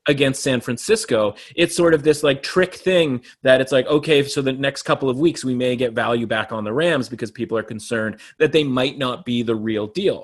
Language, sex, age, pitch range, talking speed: English, male, 30-49, 125-155 Hz, 235 wpm